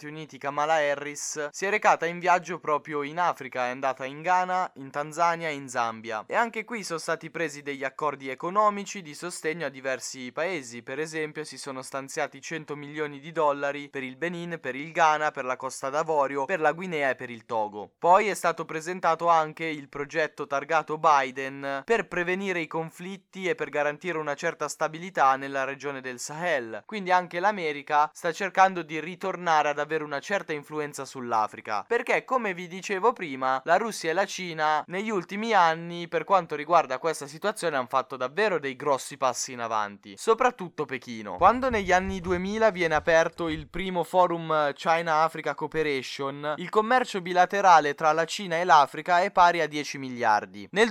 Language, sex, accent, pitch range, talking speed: Italian, male, native, 140-180 Hz, 175 wpm